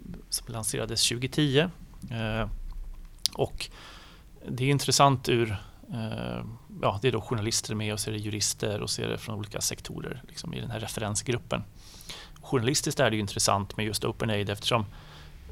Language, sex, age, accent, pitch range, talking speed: Swedish, male, 30-49, native, 110-130 Hz, 145 wpm